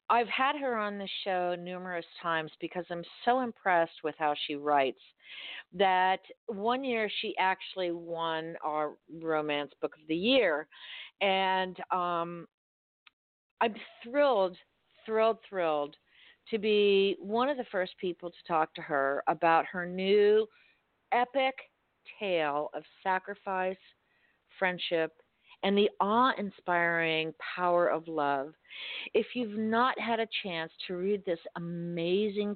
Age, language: 50-69, English